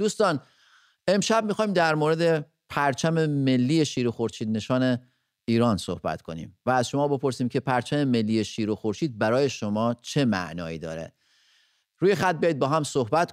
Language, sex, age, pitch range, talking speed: English, male, 30-49, 120-160 Hz, 150 wpm